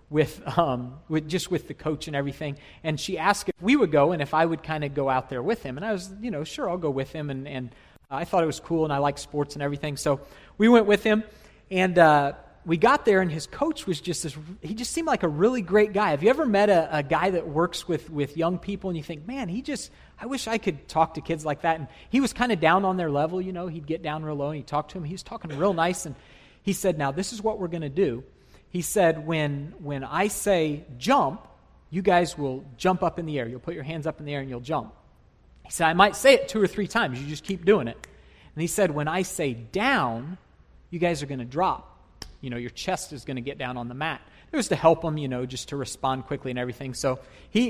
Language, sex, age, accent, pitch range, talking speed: English, male, 40-59, American, 145-200 Hz, 280 wpm